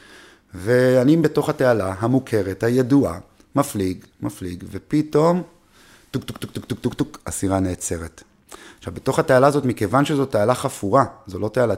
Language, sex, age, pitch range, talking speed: Hebrew, male, 30-49, 100-140 Hz, 125 wpm